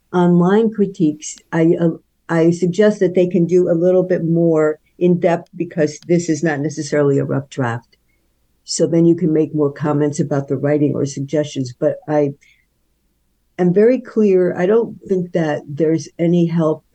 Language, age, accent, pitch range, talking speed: English, 50-69, American, 150-180 Hz, 165 wpm